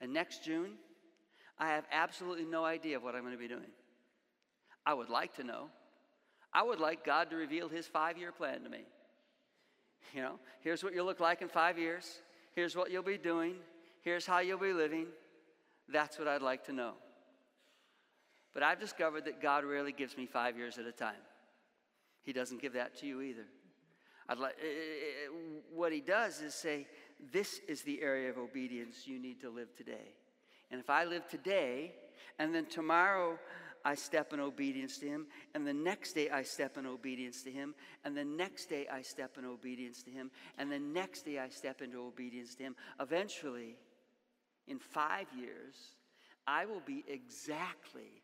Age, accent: 50-69, American